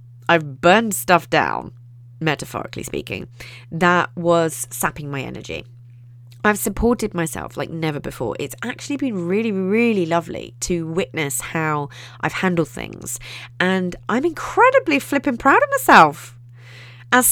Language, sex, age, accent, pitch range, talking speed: English, female, 30-49, British, 130-200 Hz, 130 wpm